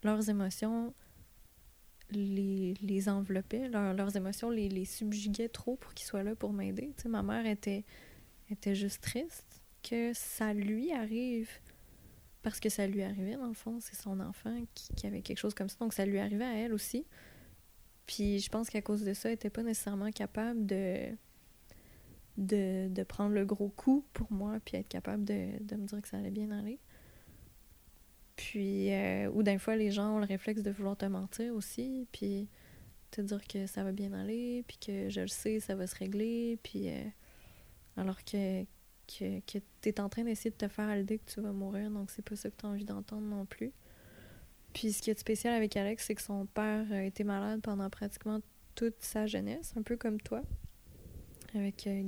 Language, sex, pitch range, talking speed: French, female, 195-220 Hz, 200 wpm